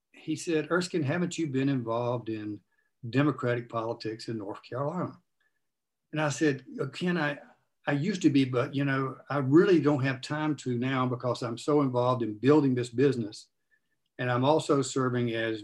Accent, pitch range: American, 120-145 Hz